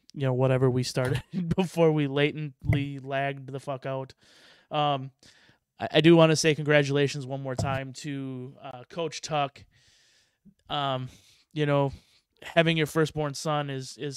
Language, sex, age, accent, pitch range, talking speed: English, male, 20-39, American, 135-155 Hz, 150 wpm